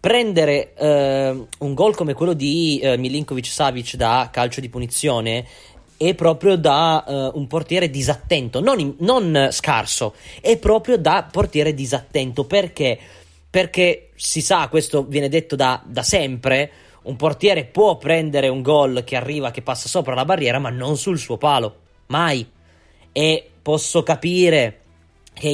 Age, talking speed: 20-39, 150 wpm